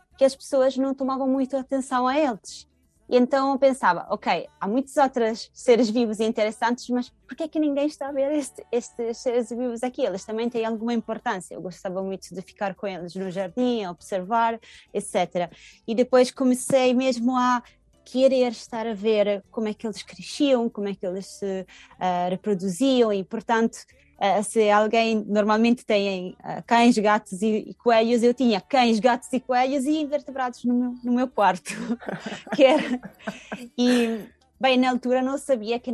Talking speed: 175 wpm